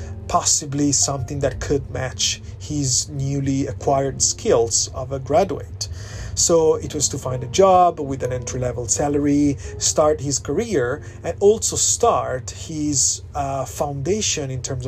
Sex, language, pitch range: male, Italian, 110-145 Hz